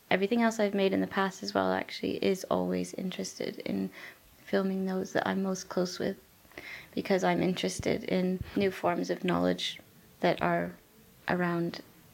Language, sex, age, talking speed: English, female, 20-39, 160 wpm